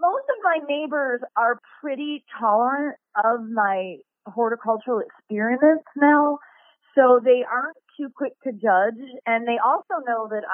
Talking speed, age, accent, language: 135 wpm, 30-49, American, English